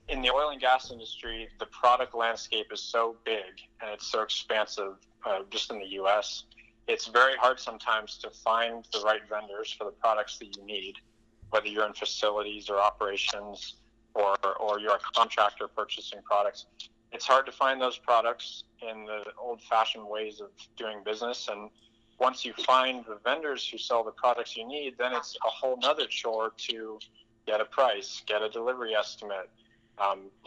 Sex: male